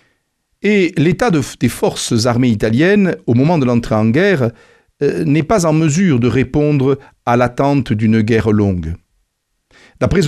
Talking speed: 145 wpm